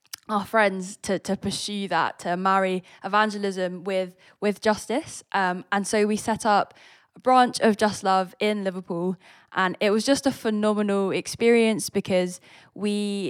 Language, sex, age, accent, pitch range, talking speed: English, female, 10-29, British, 185-210 Hz, 155 wpm